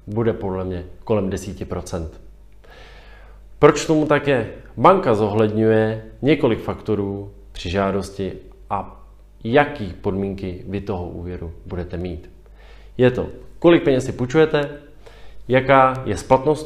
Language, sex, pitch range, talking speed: Czech, male, 100-125 Hz, 110 wpm